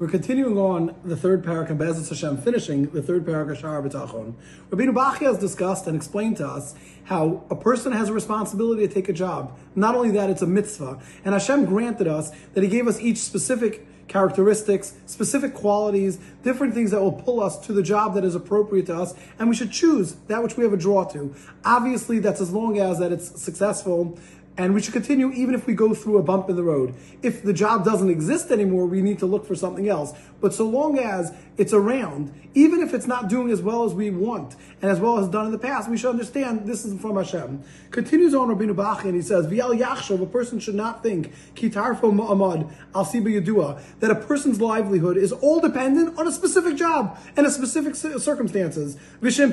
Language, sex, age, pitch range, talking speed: English, male, 30-49, 185-240 Hz, 210 wpm